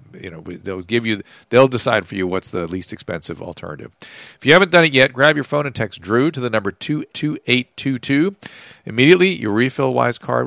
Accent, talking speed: American, 225 wpm